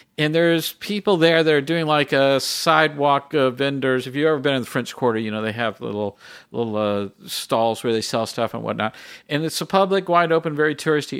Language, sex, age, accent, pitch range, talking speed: English, male, 50-69, American, 130-175 Hz, 230 wpm